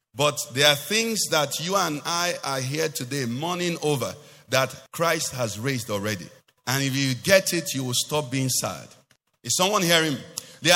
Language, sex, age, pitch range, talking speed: English, male, 50-69, 140-195 Hz, 180 wpm